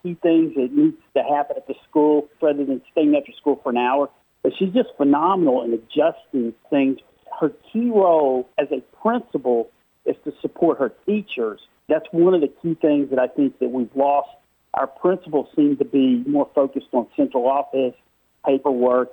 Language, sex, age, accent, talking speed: English, male, 50-69, American, 180 wpm